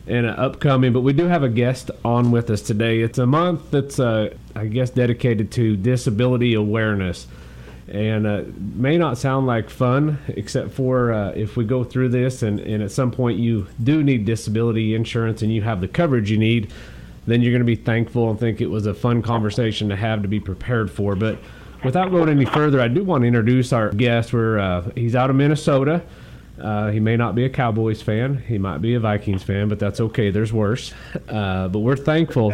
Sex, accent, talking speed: male, American, 210 wpm